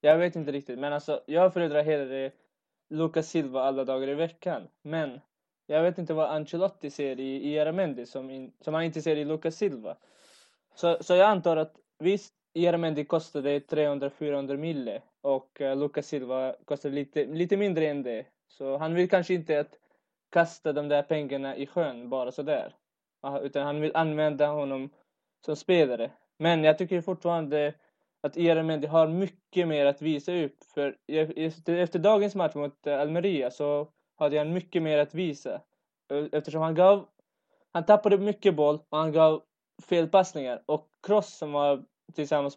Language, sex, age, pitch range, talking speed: Swedish, male, 20-39, 145-175 Hz, 165 wpm